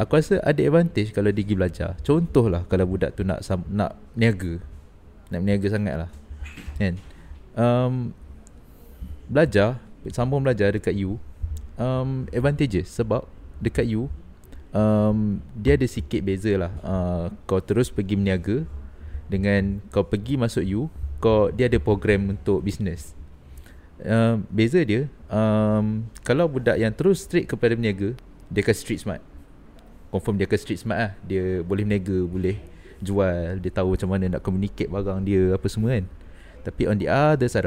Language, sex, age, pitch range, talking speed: Malay, male, 30-49, 90-110 Hz, 150 wpm